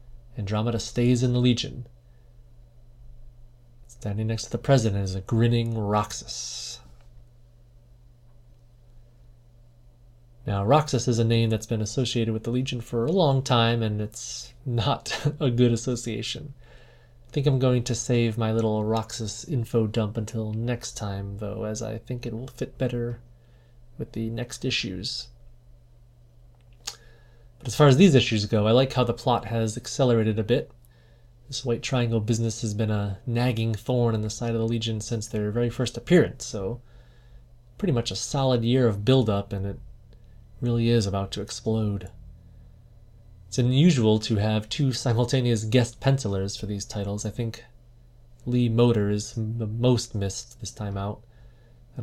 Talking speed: 155 wpm